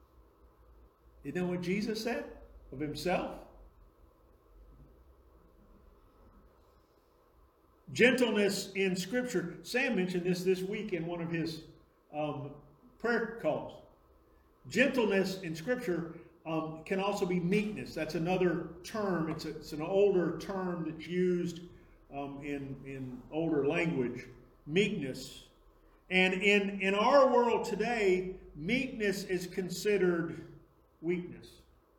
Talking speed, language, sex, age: 105 wpm, English, male, 50-69